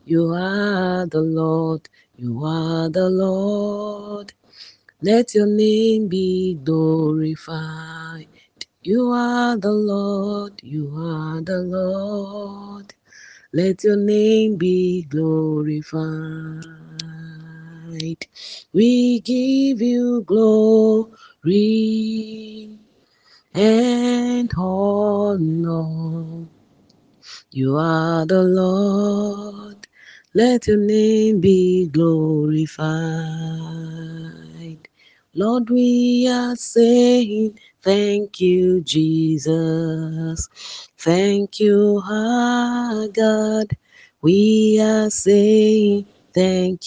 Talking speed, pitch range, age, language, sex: 70 wpm, 160-215 Hz, 30-49, English, female